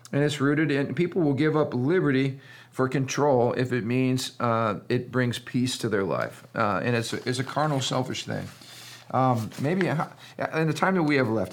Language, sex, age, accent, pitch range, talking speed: English, male, 50-69, American, 115-135 Hz, 200 wpm